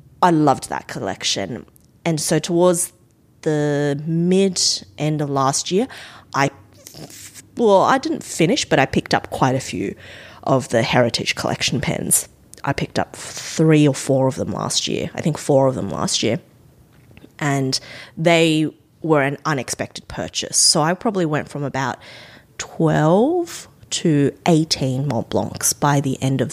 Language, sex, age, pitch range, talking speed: English, female, 30-49, 135-175 Hz, 155 wpm